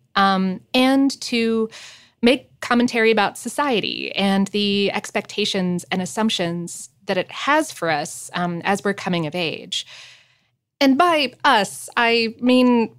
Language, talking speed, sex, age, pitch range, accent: English, 130 wpm, female, 20-39, 185-250 Hz, American